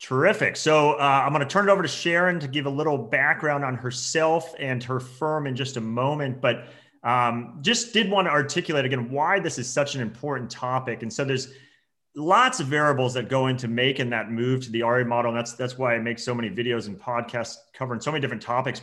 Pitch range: 125-155 Hz